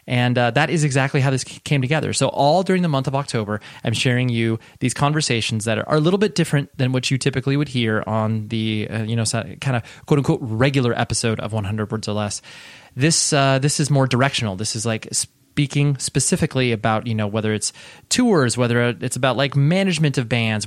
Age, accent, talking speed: 20-39, American, 210 wpm